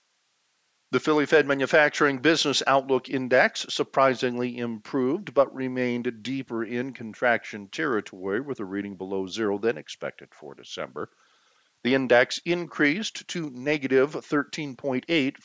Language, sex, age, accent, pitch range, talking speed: English, male, 50-69, American, 115-140 Hz, 115 wpm